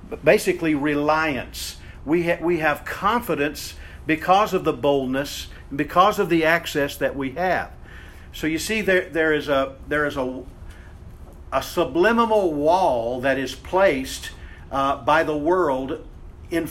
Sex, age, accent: male, 50-69, American